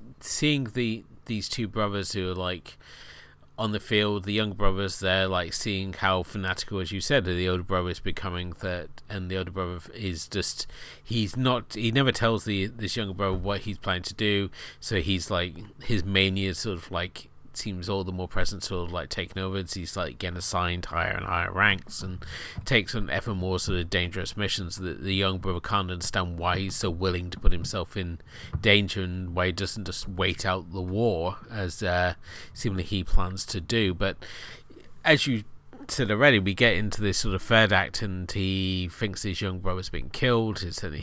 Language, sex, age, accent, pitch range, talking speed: English, male, 30-49, British, 90-105 Hz, 205 wpm